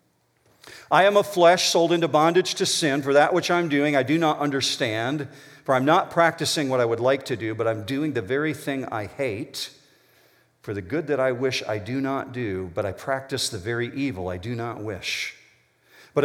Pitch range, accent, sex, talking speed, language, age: 115-170 Hz, American, male, 210 wpm, English, 50-69